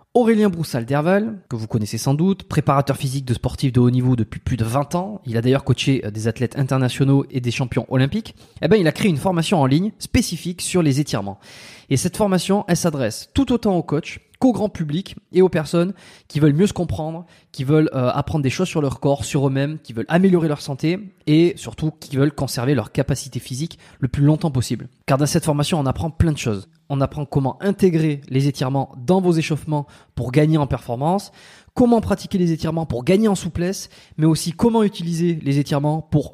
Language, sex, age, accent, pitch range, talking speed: French, male, 20-39, French, 140-180 Hz, 210 wpm